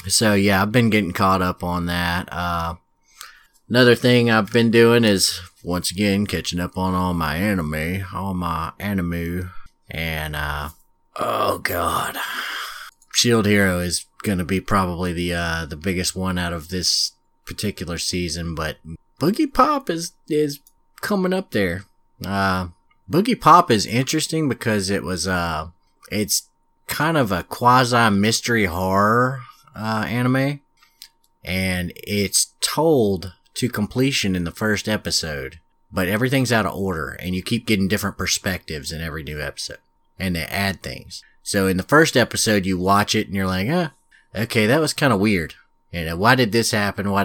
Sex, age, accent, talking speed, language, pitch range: male, 30-49, American, 165 wpm, English, 90-110 Hz